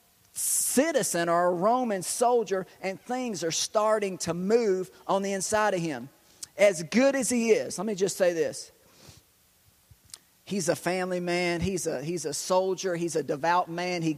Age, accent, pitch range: 40-59, American, 175-220 Hz